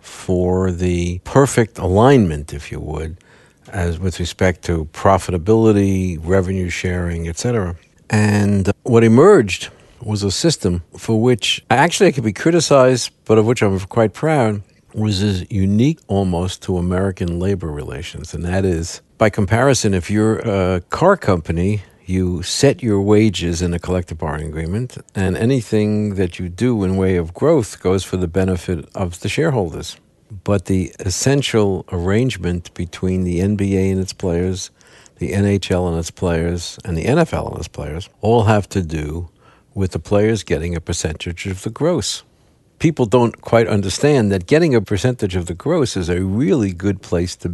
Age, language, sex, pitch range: 60-79, English, male, 90-110 Hz